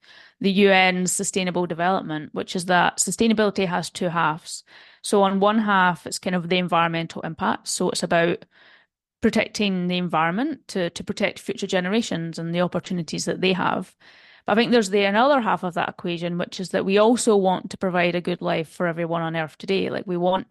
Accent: British